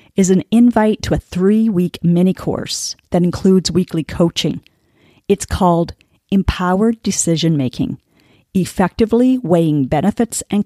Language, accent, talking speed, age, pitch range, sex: English, American, 105 wpm, 50-69, 165-200 Hz, female